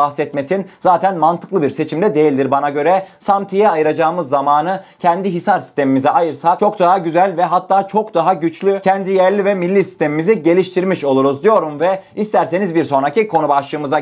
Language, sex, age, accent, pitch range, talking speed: Turkish, male, 30-49, native, 160-205 Hz, 155 wpm